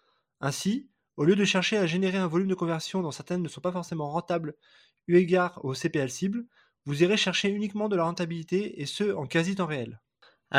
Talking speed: 205 wpm